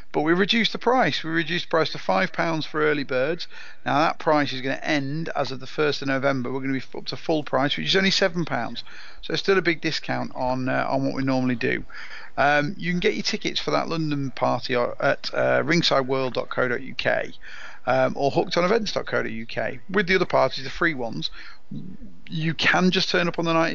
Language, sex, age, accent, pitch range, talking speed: English, male, 40-59, British, 130-165 Hz, 210 wpm